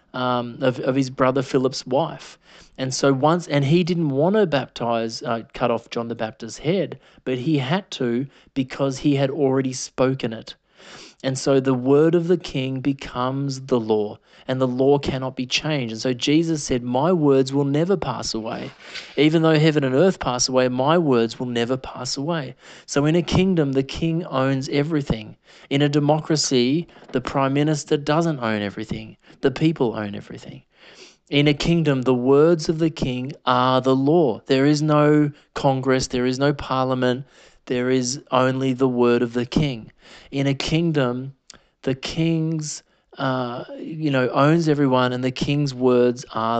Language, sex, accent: English, male, Australian